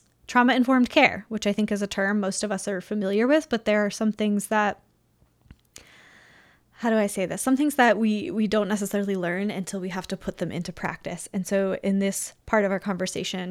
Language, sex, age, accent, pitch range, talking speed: English, female, 10-29, American, 190-215 Hz, 220 wpm